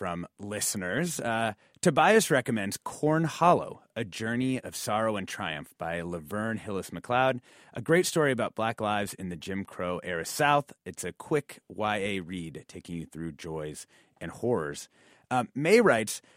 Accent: American